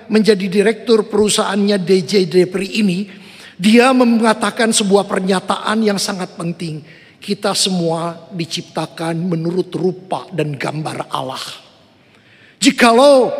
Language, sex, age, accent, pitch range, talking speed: Indonesian, male, 50-69, native, 175-230 Hz, 100 wpm